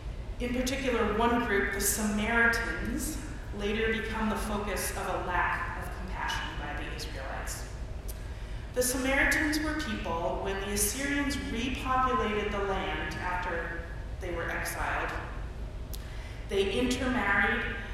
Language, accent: English, American